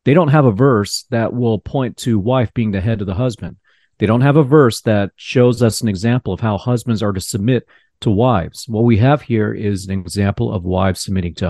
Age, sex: 40-59, male